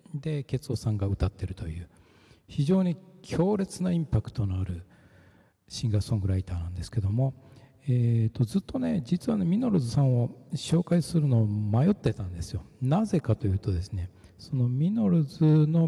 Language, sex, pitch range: Japanese, male, 105-160 Hz